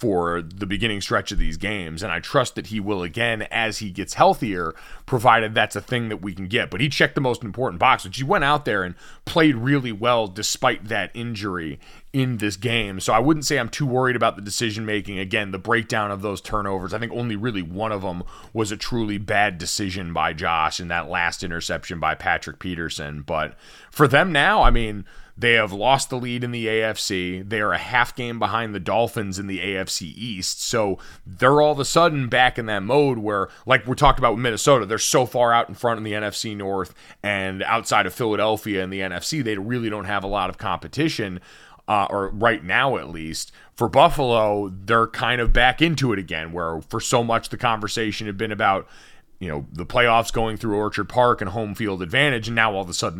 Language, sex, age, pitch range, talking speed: English, male, 30-49, 95-120 Hz, 220 wpm